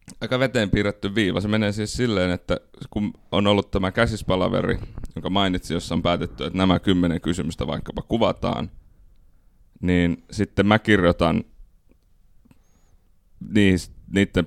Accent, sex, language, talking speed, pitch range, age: native, male, Finnish, 125 wpm, 85-95 Hz, 30-49